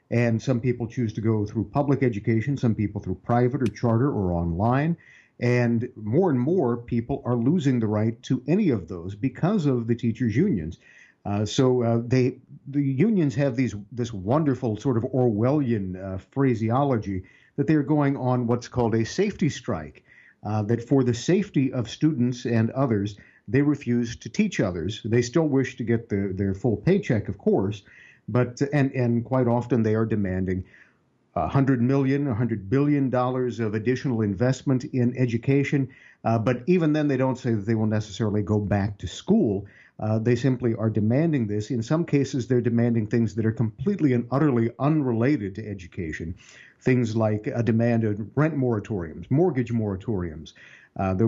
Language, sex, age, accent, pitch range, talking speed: English, male, 50-69, American, 110-135 Hz, 170 wpm